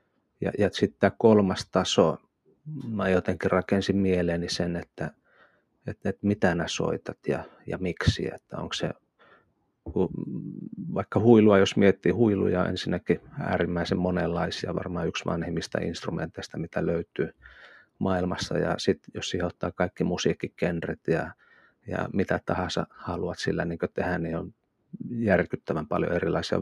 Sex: male